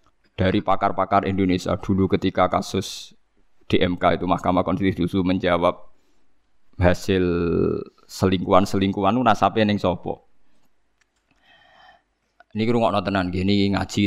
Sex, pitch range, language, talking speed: male, 95-145 Hz, Indonesian, 110 wpm